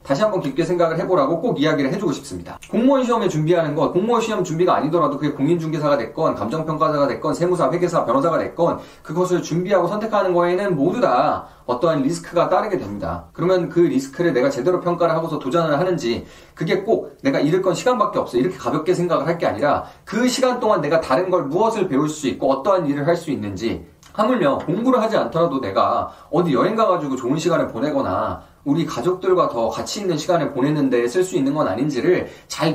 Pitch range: 145-185 Hz